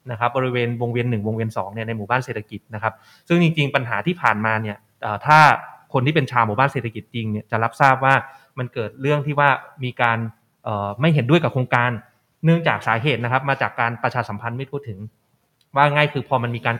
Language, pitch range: Thai, 115-145 Hz